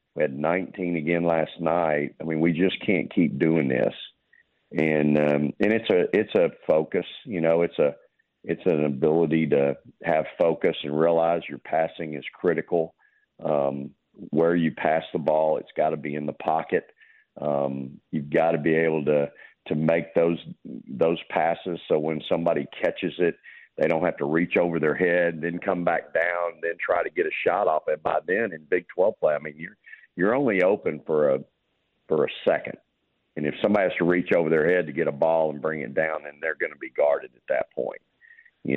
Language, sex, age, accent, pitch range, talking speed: English, male, 50-69, American, 75-90 Hz, 205 wpm